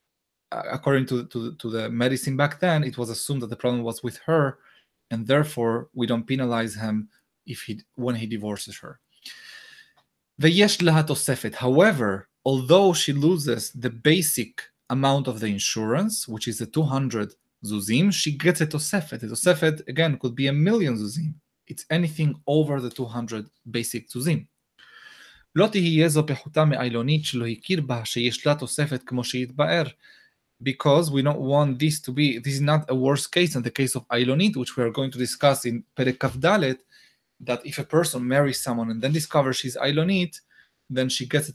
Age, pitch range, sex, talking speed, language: 20-39, 120-155 Hz, male, 155 wpm, English